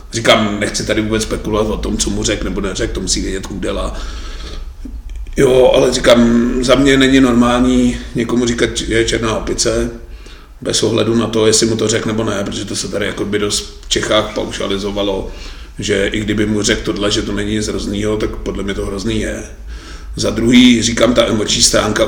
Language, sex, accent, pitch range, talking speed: Czech, male, native, 105-115 Hz, 195 wpm